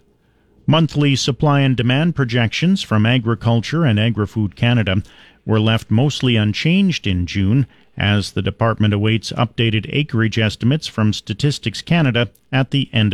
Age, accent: 40-59, American